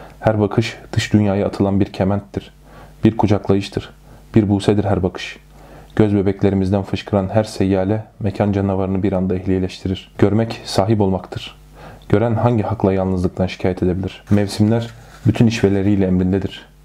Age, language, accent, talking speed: 30-49, Turkish, native, 125 wpm